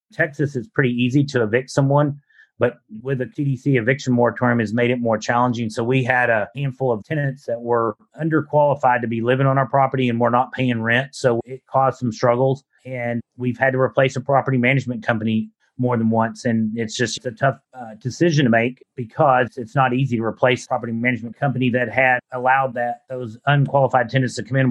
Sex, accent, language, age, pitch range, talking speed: male, American, English, 30-49, 120-135 Hz, 210 wpm